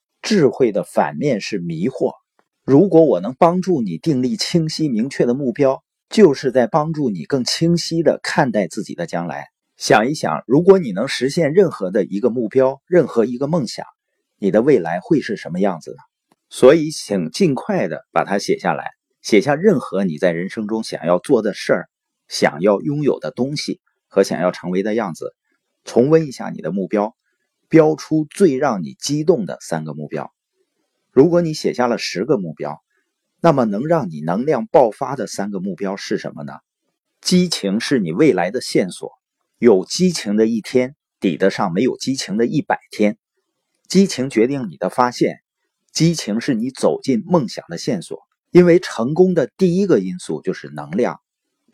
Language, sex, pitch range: Chinese, male, 120-185 Hz